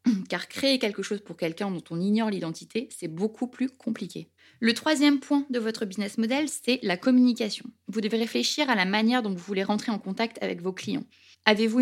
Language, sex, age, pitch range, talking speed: French, female, 20-39, 195-240 Hz, 205 wpm